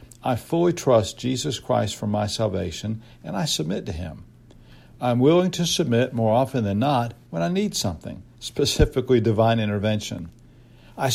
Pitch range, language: 100-125 Hz, English